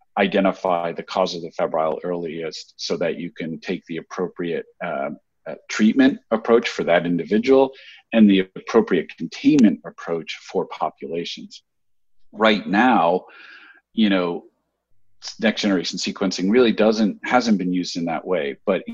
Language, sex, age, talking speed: English, male, 40-59, 135 wpm